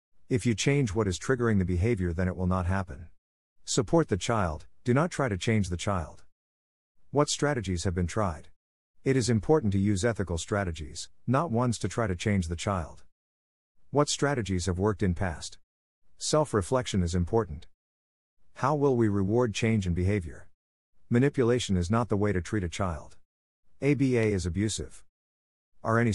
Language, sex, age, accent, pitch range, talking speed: English, male, 50-69, American, 85-120 Hz, 170 wpm